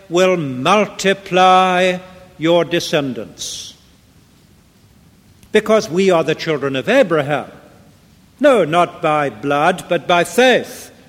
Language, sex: English, male